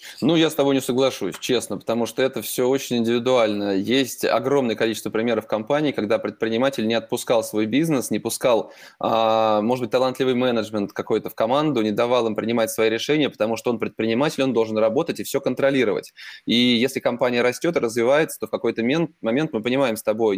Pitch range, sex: 110-135 Hz, male